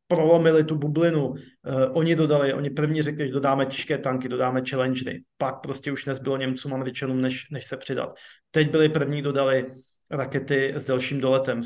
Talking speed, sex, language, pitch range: 175 wpm, male, Slovak, 135-155 Hz